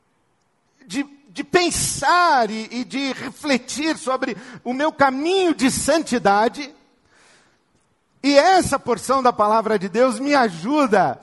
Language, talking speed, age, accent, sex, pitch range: Portuguese, 120 wpm, 50-69, Brazilian, male, 170-265 Hz